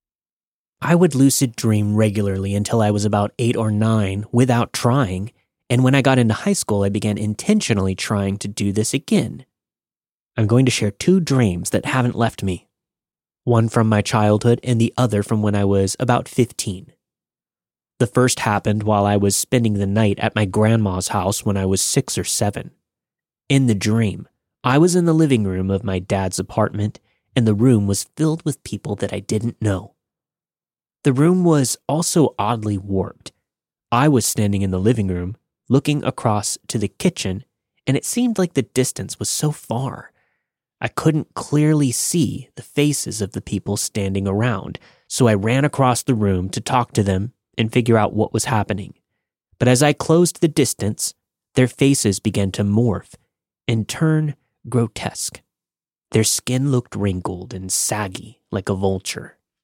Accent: American